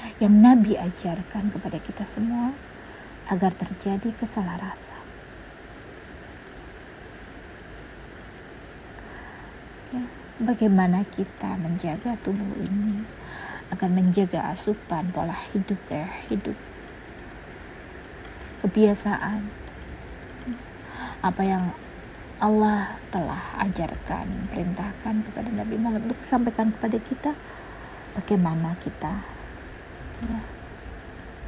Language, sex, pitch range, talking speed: Indonesian, female, 185-225 Hz, 75 wpm